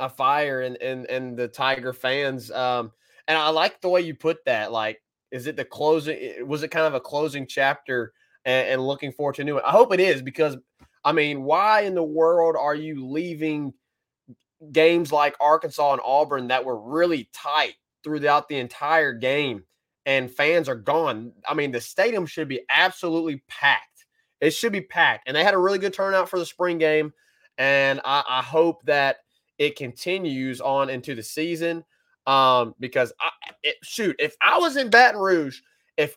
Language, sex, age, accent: English, male, 20-39, American